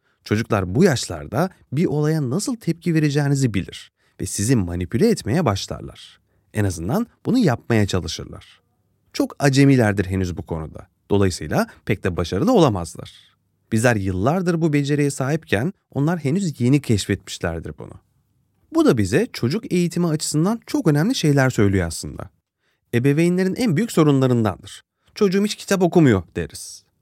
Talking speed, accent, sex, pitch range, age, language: 130 wpm, native, male, 100-170 Hz, 30-49, Turkish